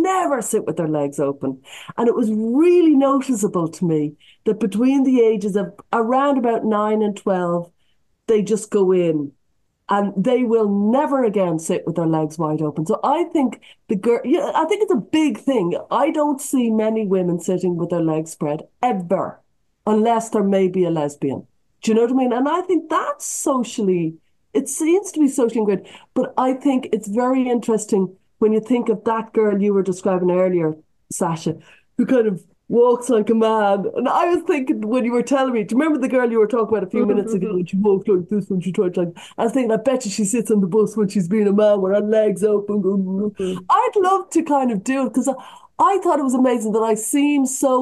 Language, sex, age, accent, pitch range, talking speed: English, female, 40-59, Irish, 195-260 Hz, 220 wpm